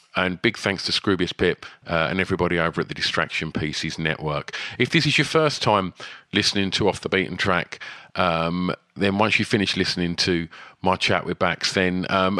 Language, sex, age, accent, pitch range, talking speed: English, male, 40-59, British, 85-100 Hz, 195 wpm